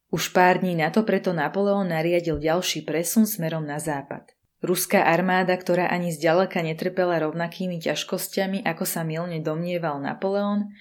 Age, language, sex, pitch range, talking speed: 20-39, Slovak, female, 160-205 Hz, 145 wpm